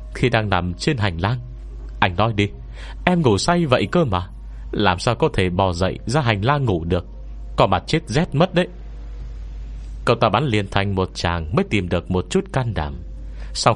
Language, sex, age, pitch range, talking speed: Vietnamese, male, 30-49, 80-120 Hz, 205 wpm